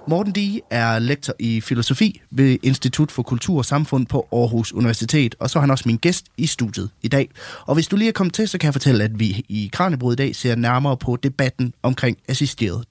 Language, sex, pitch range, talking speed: Danish, male, 115-160 Hz, 230 wpm